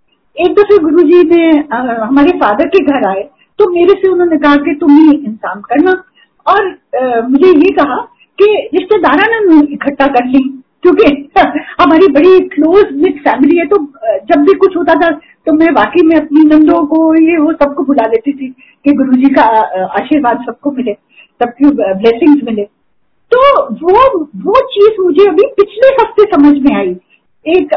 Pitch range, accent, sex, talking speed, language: 280-385 Hz, native, female, 170 wpm, Hindi